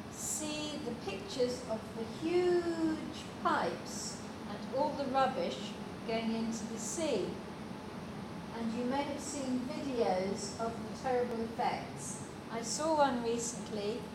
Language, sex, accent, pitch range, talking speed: English, female, British, 215-255 Hz, 120 wpm